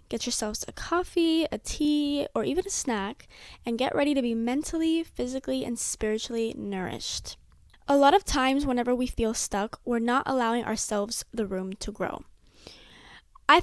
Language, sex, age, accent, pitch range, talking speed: English, female, 10-29, American, 220-270 Hz, 165 wpm